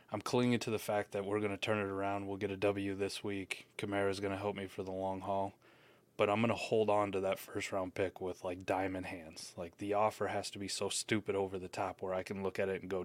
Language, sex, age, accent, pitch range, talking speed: English, male, 20-39, American, 95-105 Hz, 275 wpm